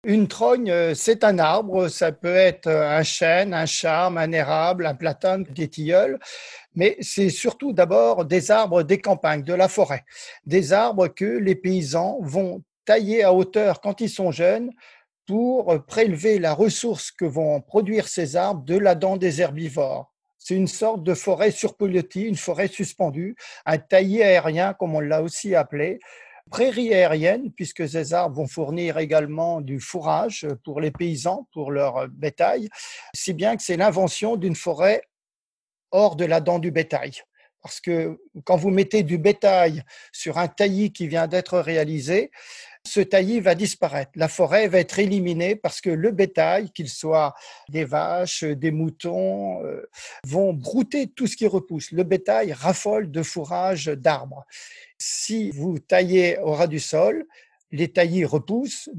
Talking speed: 160 wpm